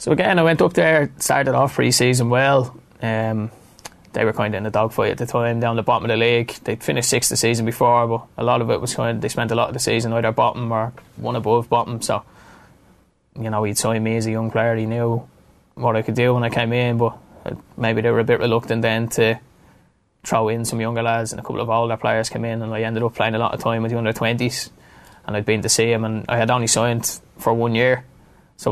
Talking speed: 255 wpm